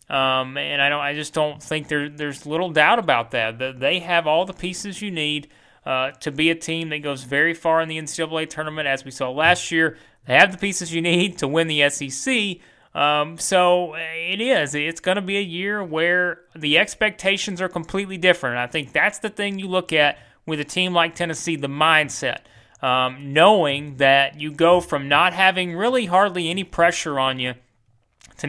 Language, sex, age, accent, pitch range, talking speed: English, male, 30-49, American, 145-175 Hz, 205 wpm